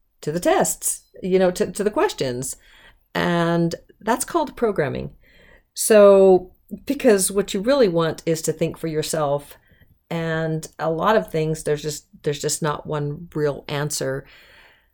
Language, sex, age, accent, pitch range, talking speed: English, female, 40-59, American, 155-190 Hz, 150 wpm